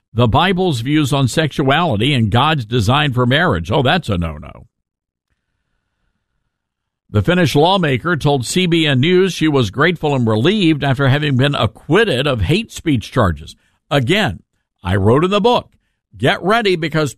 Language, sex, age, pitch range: English, male, 50-69, 120-175 Hz